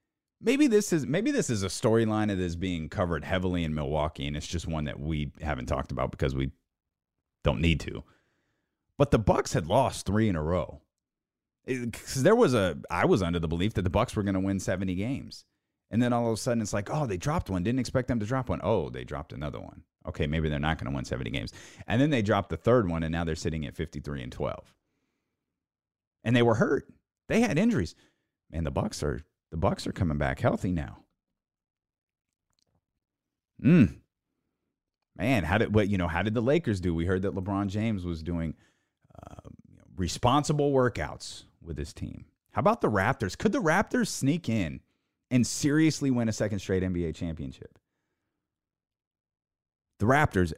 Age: 30-49